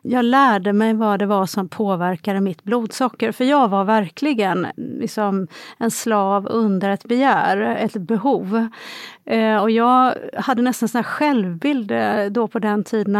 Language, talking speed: Swedish, 135 wpm